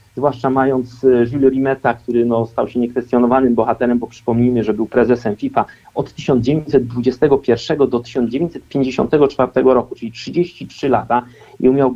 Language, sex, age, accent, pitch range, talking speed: Polish, male, 50-69, native, 120-155 Hz, 125 wpm